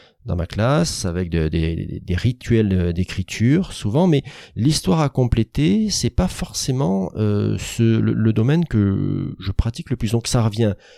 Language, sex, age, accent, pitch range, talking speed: French, male, 30-49, French, 100-130 Hz, 155 wpm